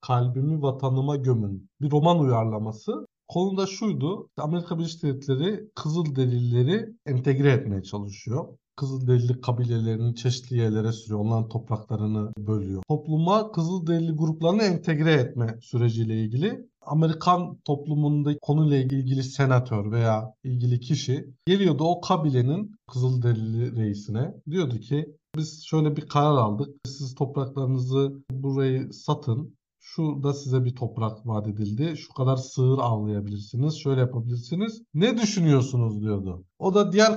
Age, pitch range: 50-69, 125-165 Hz